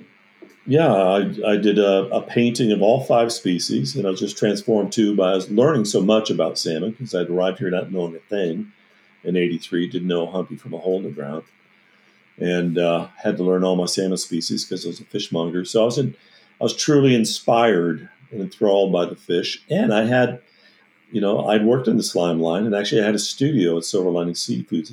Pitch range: 85-105 Hz